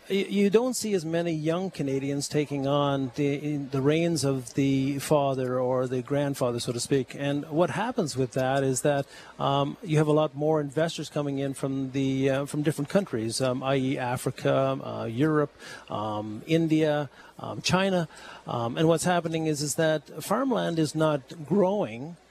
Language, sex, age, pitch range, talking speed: English, male, 50-69, 135-165 Hz, 170 wpm